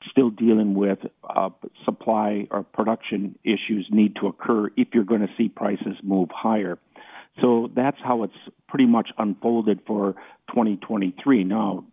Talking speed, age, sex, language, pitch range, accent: 140 wpm, 50-69, male, English, 105-120 Hz, American